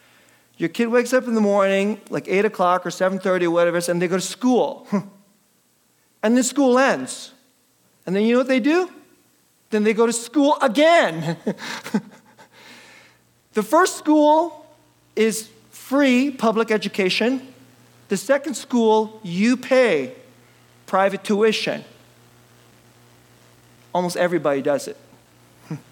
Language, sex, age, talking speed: English, male, 40-59, 125 wpm